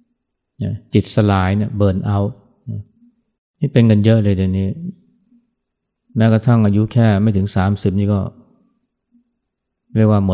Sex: male